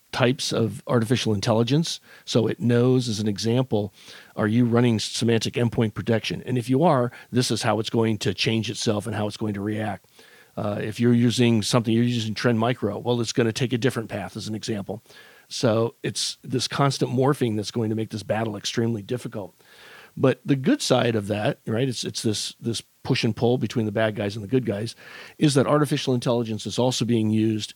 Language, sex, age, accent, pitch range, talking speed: English, male, 40-59, American, 110-130 Hz, 205 wpm